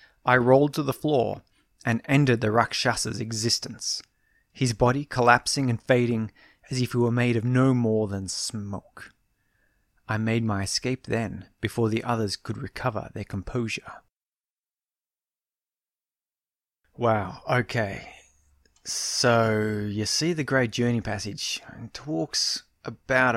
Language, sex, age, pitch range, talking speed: English, male, 20-39, 110-130 Hz, 125 wpm